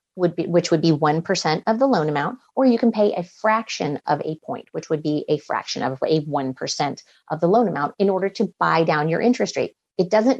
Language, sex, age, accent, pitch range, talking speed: English, female, 30-49, American, 160-200 Hz, 235 wpm